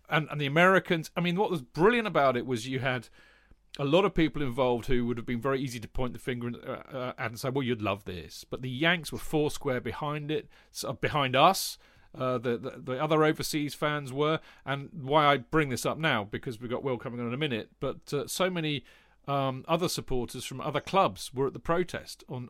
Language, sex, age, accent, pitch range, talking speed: English, male, 40-59, British, 120-155 Hz, 230 wpm